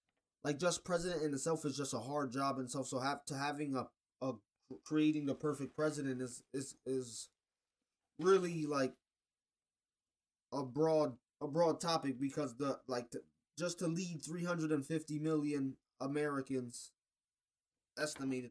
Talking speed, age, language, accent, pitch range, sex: 150 wpm, 20-39, English, American, 130-155 Hz, male